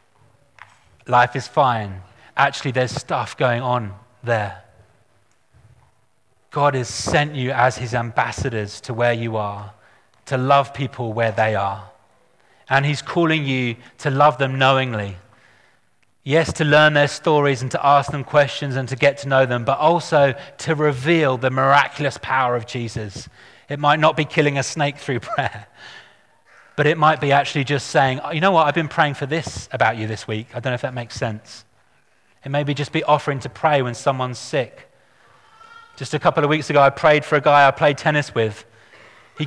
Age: 30-49